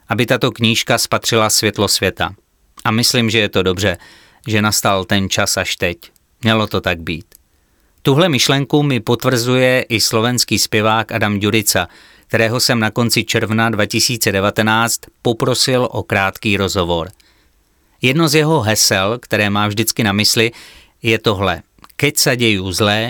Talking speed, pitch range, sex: 145 wpm, 105-125 Hz, male